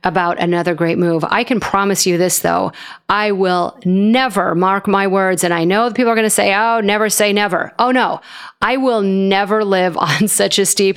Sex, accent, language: female, American, English